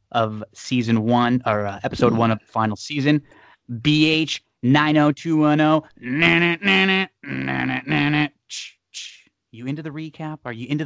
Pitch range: 110-145 Hz